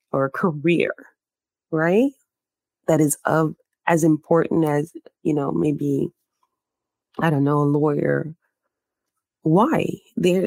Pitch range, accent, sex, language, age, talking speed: 165-215 Hz, American, female, English, 20-39, 110 wpm